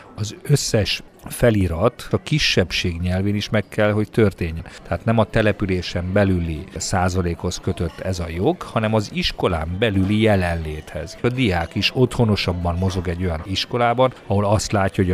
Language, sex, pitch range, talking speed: Hungarian, male, 90-110 Hz, 150 wpm